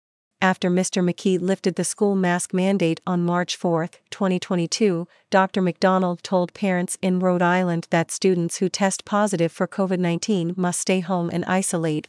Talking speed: 155 wpm